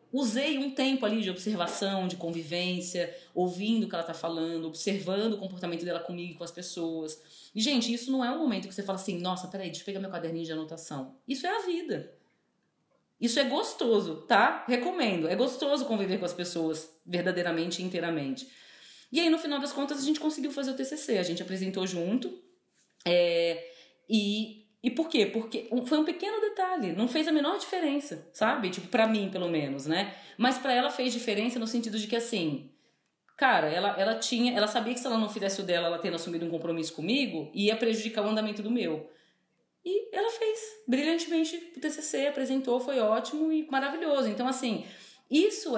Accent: Brazilian